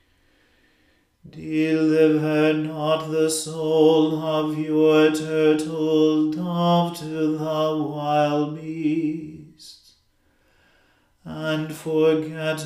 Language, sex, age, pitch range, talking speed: English, male, 40-59, 150-155 Hz, 65 wpm